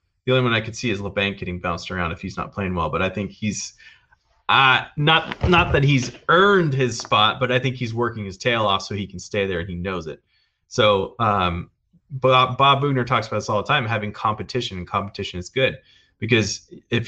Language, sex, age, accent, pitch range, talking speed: English, male, 20-39, American, 95-120 Hz, 220 wpm